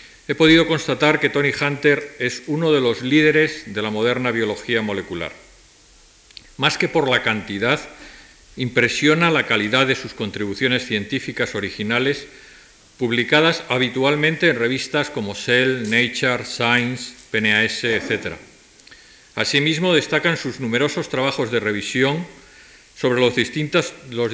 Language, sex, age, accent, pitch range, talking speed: Spanish, male, 50-69, Spanish, 115-145 Hz, 120 wpm